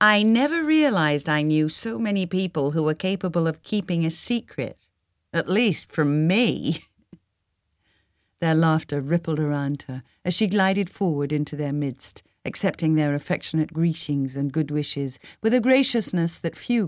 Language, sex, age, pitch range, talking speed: English, female, 50-69, 140-190 Hz, 155 wpm